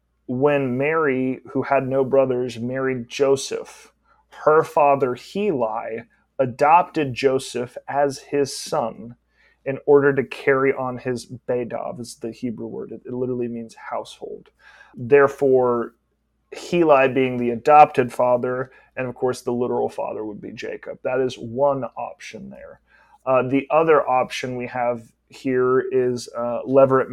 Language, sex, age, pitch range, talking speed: English, male, 30-49, 120-140 Hz, 135 wpm